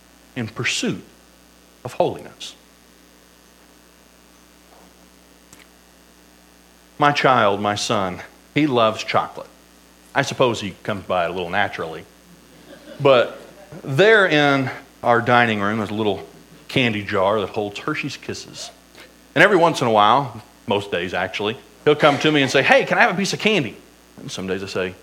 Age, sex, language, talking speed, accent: 40-59, male, English, 150 wpm, American